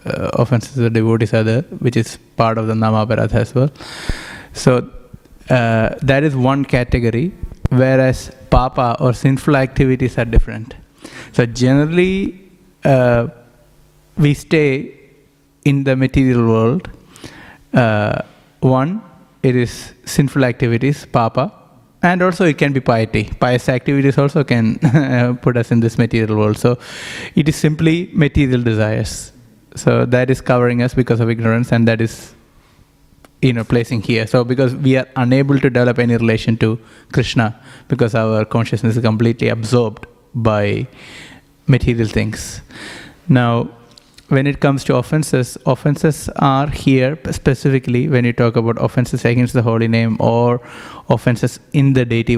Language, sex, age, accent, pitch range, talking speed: English, male, 30-49, Indian, 115-140 Hz, 145 wpm